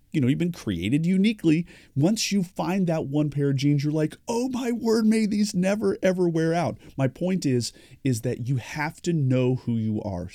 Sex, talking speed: male, 215 wpm